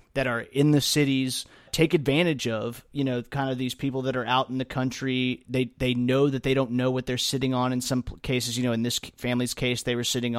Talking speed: 250 wpm